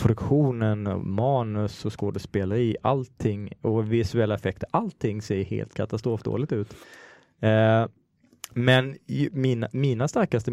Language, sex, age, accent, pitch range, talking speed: Swedish, male, 20-39, Norwegian, 105-130 Hz, 105 wpm